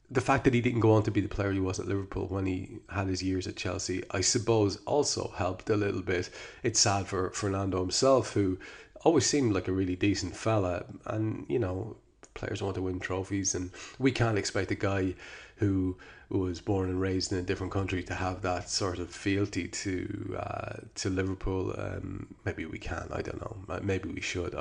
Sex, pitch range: male, 90-105 Hz